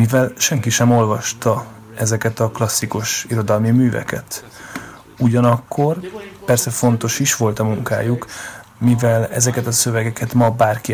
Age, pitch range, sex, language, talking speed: 30-49, 115-130 Hz, male, Hungarian, 120 wpm